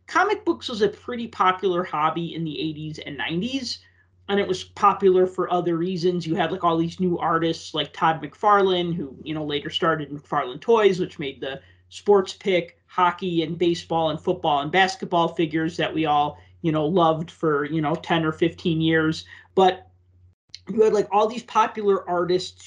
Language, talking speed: English, 185 wpm